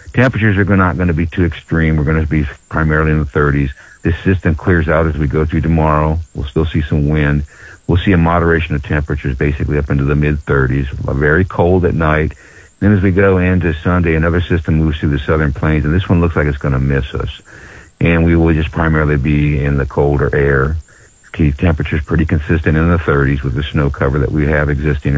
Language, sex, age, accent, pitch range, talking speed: English, male, 60-79, American, 70-85 Hz, 220 wpm